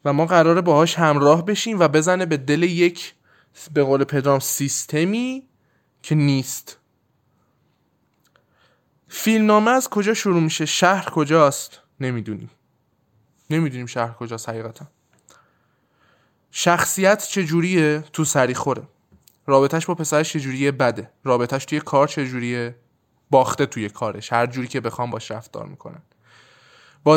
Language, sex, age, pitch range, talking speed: Persian, male, 20-39, 130-170 Hz, 115 wpm